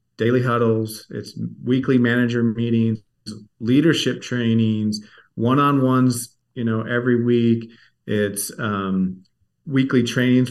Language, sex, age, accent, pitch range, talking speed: English, male, 40-59, American, 110-130 Hz, 95 wpm